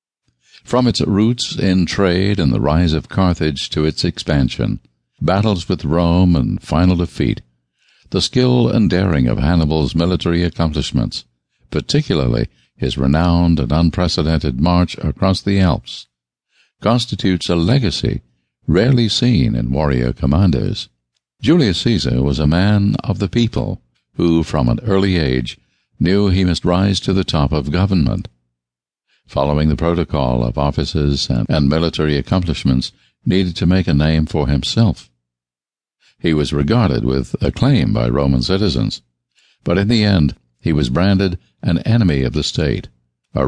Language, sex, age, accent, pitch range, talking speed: English, male, 60-79, American, 65-95 Hz, 140 wpm